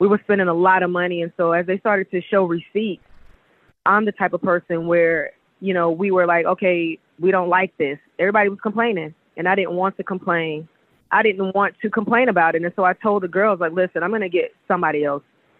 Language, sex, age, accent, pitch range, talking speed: English, female, 20-39, American, 175-205 Hz, 235 wpm